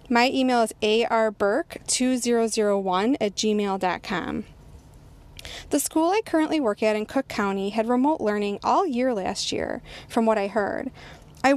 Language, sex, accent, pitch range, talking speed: English, female, American, 210-260 Hz, 140 wpm